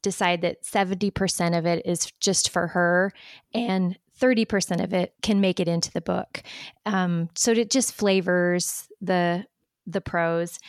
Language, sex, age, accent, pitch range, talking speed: English, female, 20-39, American, 170-195 Hz, 150 wpm